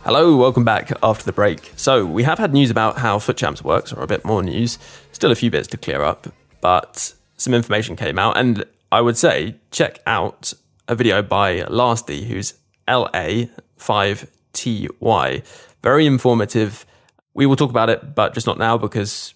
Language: English